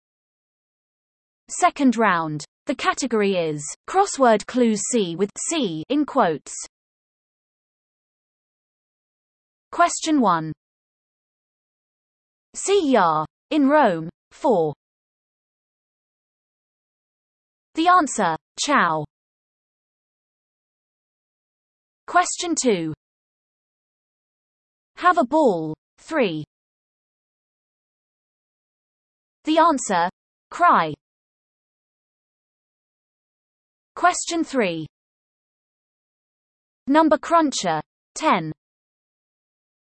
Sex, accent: female, British